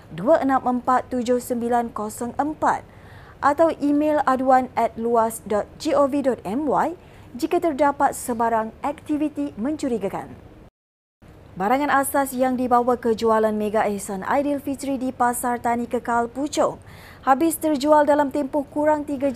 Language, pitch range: Malay, 225-285 Hz